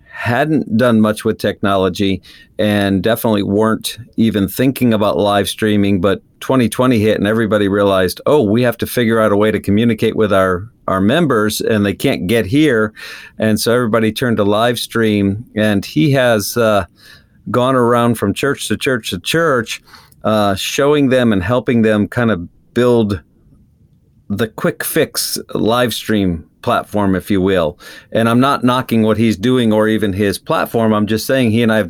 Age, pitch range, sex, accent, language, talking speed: 50-69, 100-120 Hz, male, American, English, 175 wpm